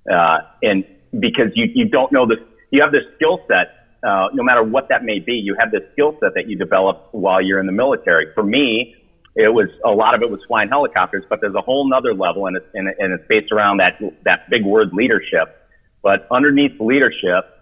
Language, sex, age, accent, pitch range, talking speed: English, male, 40-59, American, 100-130 Hz, 220 wpm